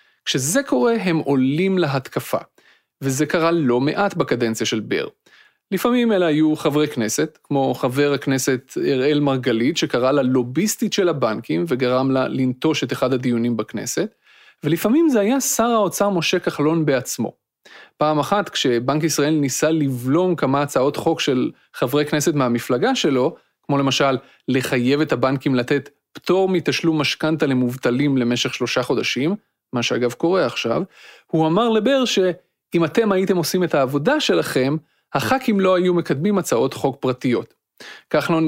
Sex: male